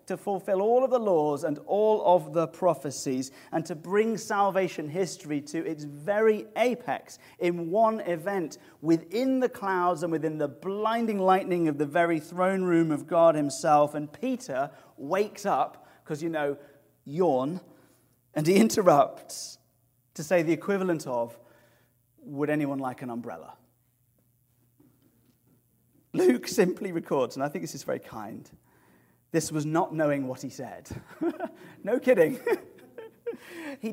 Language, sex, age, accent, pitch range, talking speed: English, male, 30-49, British, 125-185 Hz, 140 wpm